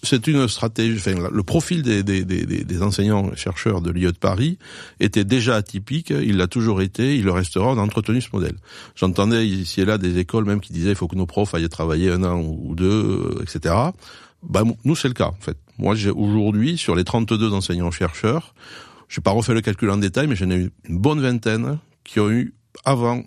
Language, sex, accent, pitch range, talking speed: French, male, French, 90-115 Hz, 215 wpm